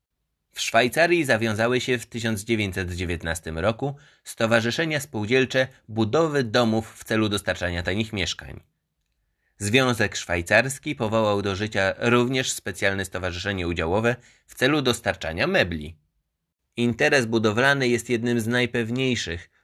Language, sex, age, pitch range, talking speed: Polish, male, 20-39, 95-125 Hz, 105 wpm